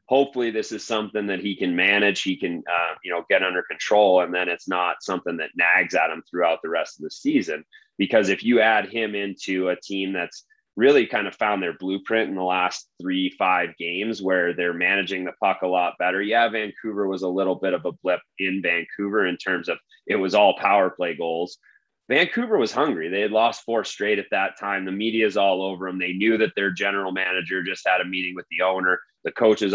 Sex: male